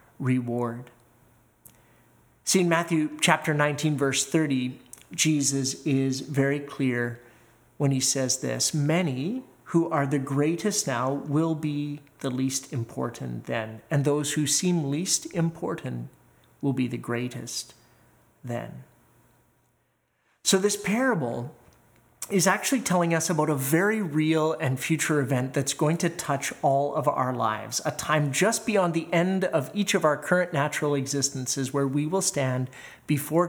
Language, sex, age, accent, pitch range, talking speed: English, male, 40-59, American, 130-165 Hz, 140 wpm